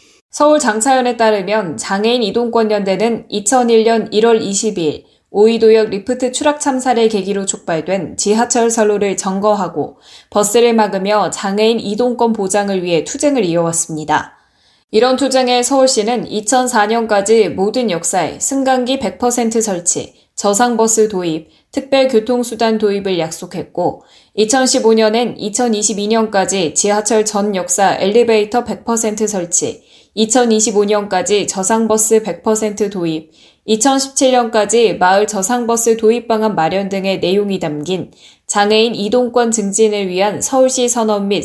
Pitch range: 195-235 Hz